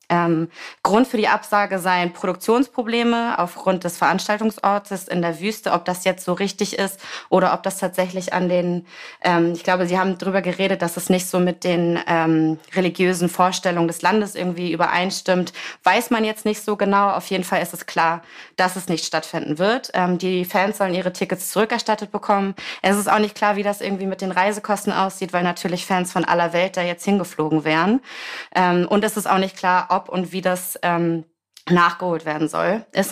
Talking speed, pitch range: 195 wpm, 175-205 Hz